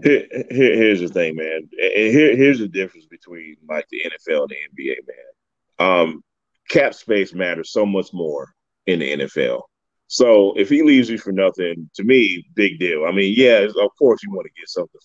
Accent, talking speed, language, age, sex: American, 185 wpm, English, 30-49, male